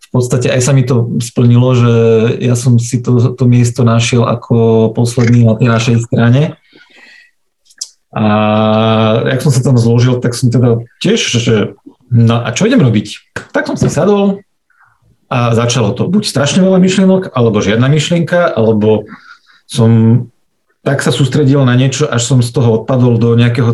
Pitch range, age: 115-140 Hz, 40-59